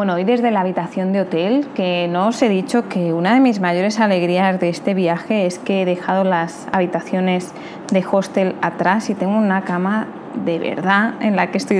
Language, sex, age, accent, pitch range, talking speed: Spanish, female, 20-39, Spanish, 185-235 Hz, 205 wpm